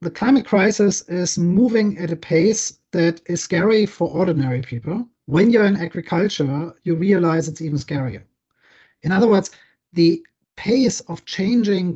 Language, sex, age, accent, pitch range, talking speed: English, male, 40-59, German, 155-190 Hz, 150 wpm